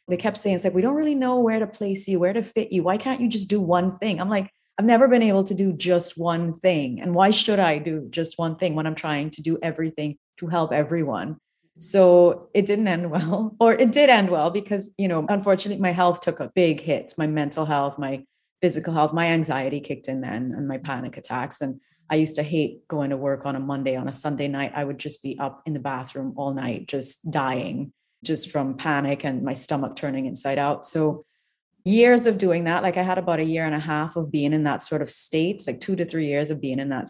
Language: English